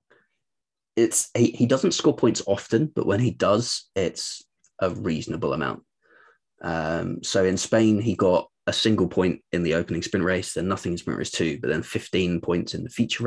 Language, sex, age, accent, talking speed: English, male, 20-39, British, 190 wpm